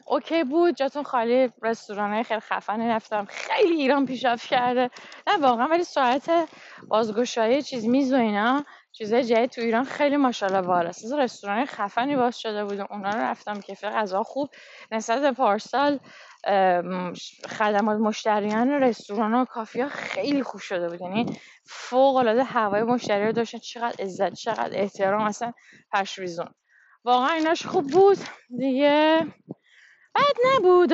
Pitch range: 215-275 Hz